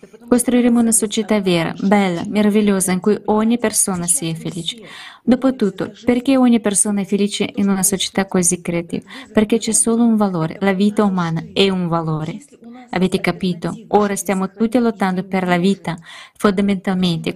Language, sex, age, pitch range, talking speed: Italian, female, 20-39, 185-225 Hz, 150 wpm